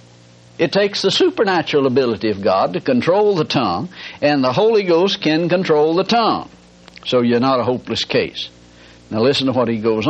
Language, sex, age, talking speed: English, male, 60-79, 185 wpm